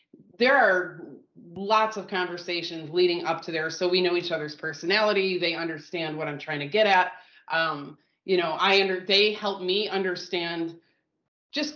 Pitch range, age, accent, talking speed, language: 160-195 Hz, 30-49, American, 170 wpm, English